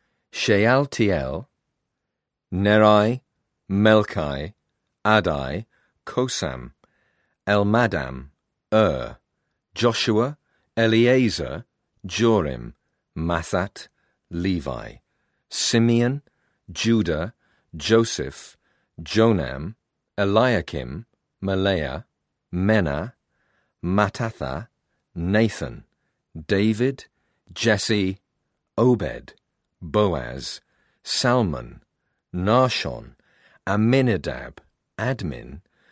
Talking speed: 50 wpm